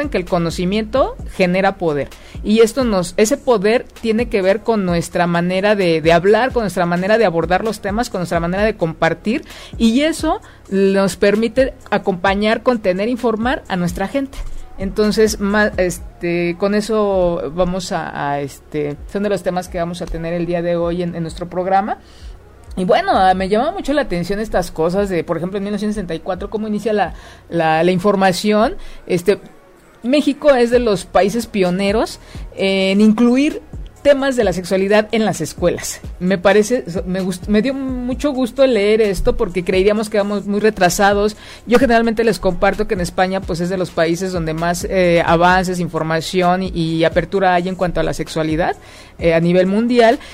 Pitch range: 175-225 Hz